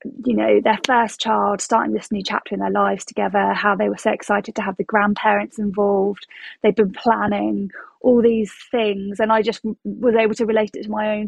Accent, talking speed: British, 215 wpm